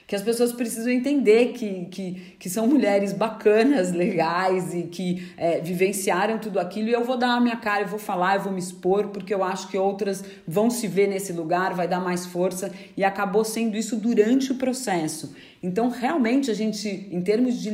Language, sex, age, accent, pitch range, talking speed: Portuguese, female, 40-59, Brazilian, 180-225 Hz, 195 wpm